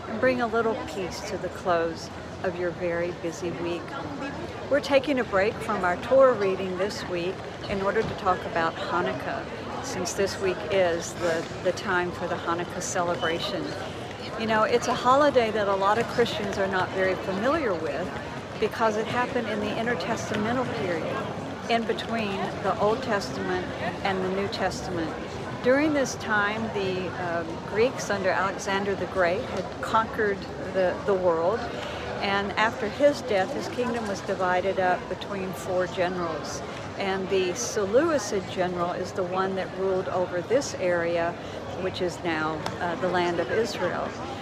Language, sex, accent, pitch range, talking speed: English, female, American, 175-220 Hz, 160 wpm